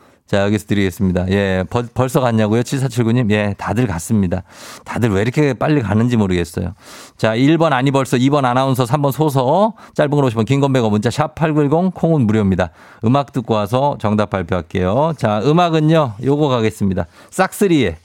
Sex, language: male, Korean